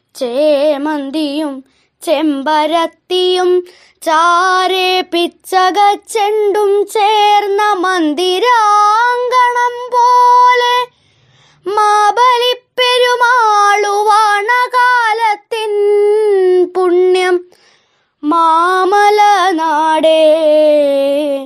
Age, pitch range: 20-39, 315-430 Hz